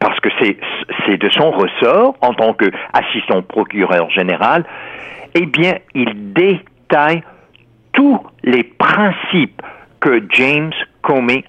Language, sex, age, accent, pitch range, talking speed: French, male, 60-79, French, 115-165 Hz, 110 wpm